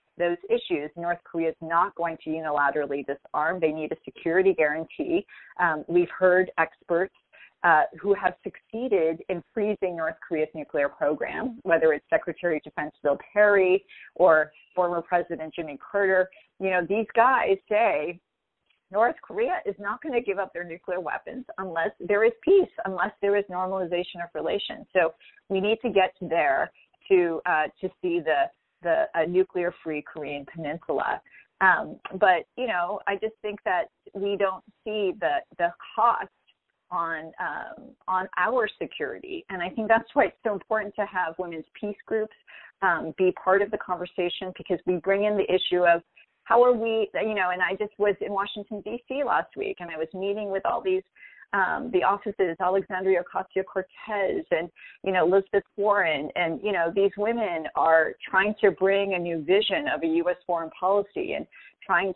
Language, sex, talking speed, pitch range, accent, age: English, female, 175 wpm, 175-215 Hz, American, 30-49